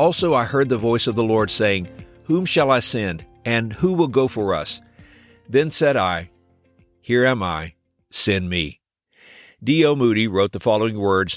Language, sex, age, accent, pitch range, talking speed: English, male, 50-69, American, 105-140 Hz, 175 wpm